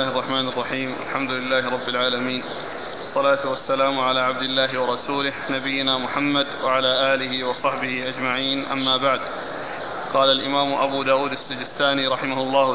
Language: Arabic